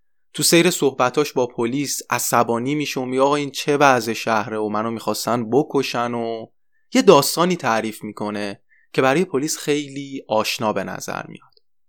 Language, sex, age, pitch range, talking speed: Persian, male, 20-39, 110-140 Hz, 155 wpm